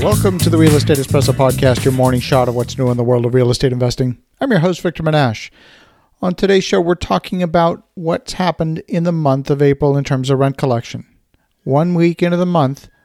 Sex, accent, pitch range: male, American, 140-170 Hz